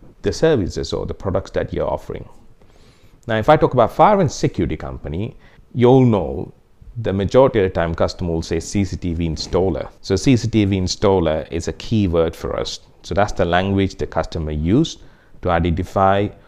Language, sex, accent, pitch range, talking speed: English, male, Indian, 85-125 Hz, 170 wpm